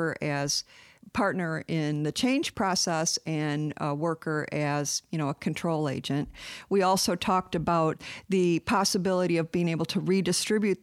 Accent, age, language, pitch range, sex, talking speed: American, 50-69, English, 165-200 Hz, female, 145 wpm